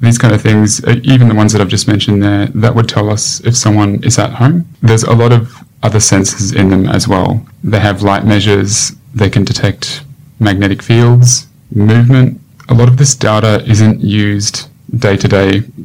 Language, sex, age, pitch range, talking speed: English, male, 20-39, 105-130 Hz, 185 wpm